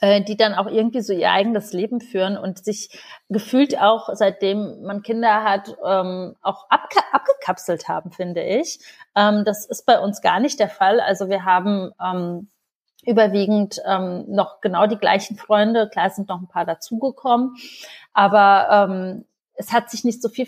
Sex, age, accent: female, 30-49, German